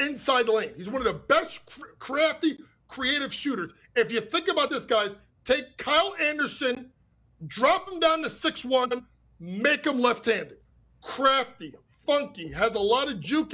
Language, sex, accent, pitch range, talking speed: English, male, American, 225-315 Hz, 155 wpm